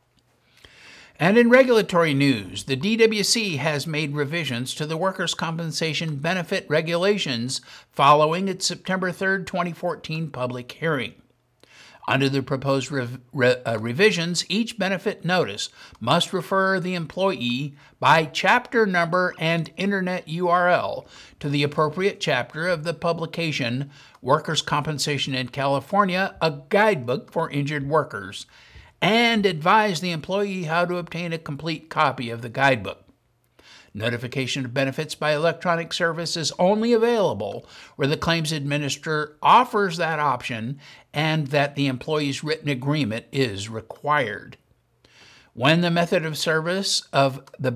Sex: male